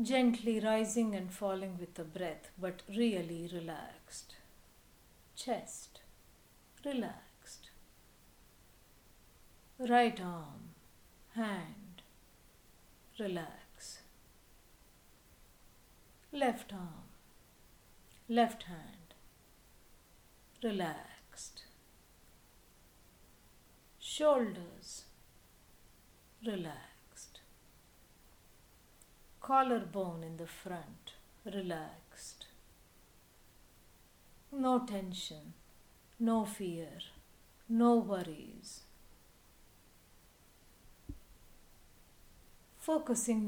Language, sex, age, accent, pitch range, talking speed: English, female, 60-79, Indian, 175-230 Hz, 50 wpm